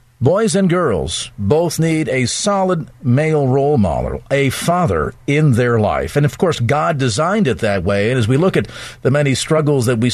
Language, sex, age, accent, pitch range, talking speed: English, male, 50-69, American, 125-175 Hz, 195 wpm